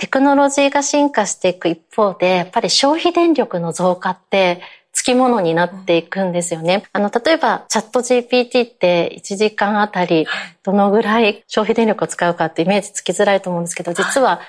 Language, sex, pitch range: Japanese, female, 180-245 Hz